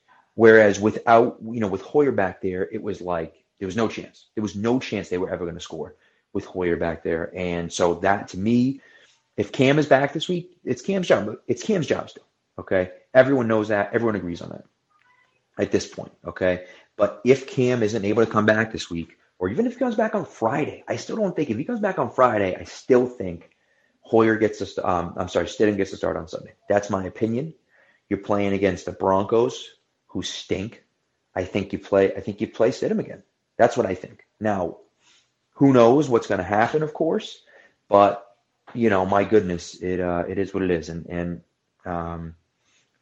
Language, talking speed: English, 210 wpm